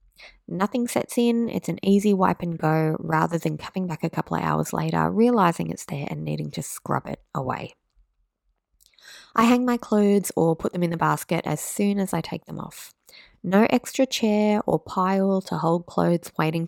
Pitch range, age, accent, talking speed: 160-220 Hz, 20-39, Australian, 190 wpm